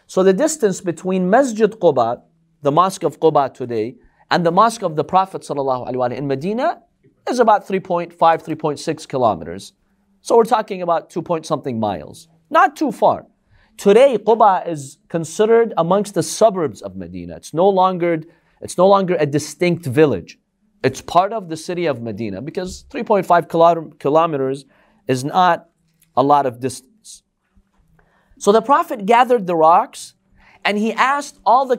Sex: male